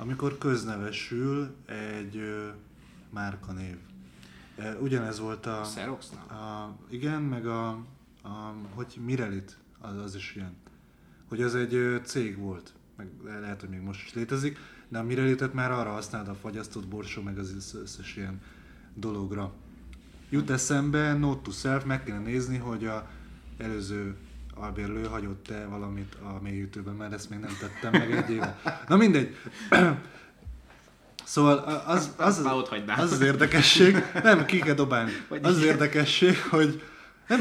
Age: 20-39